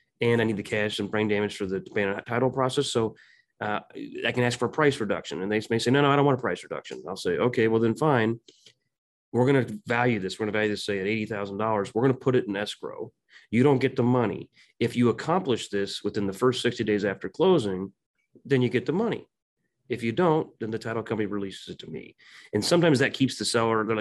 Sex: male